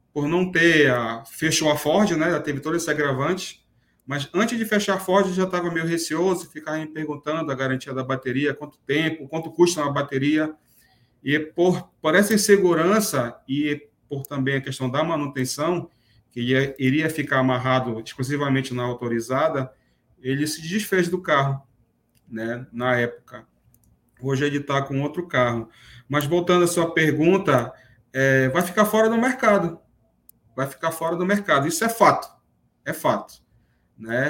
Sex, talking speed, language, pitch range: male, 160 wpm, Portuguese, 135-170 Hz